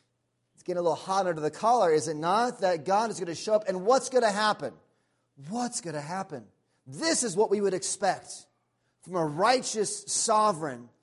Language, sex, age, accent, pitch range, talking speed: English, male, 30-49, American, 130-210 Hz, 200 wpm